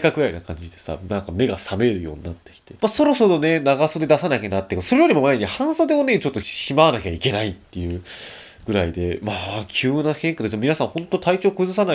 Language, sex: Japanese, male